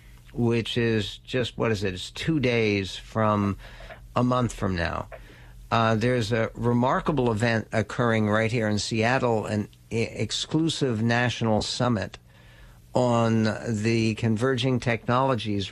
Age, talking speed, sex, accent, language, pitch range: 60-79, 120 wpm, male, American, English, 110-130 Hz